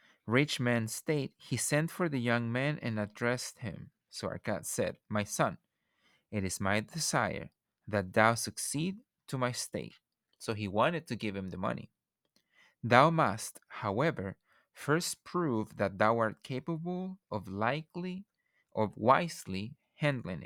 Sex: male